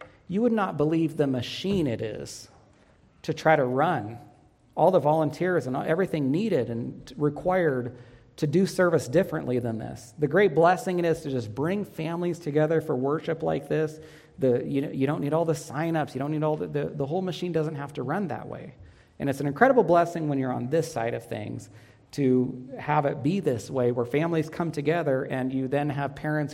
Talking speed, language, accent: 205 wpm, English, American